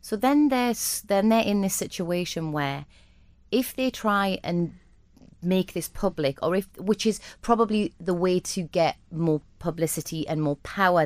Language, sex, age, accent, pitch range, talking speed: English, female, 30-49, British, 160-215 Hz, 165 wpm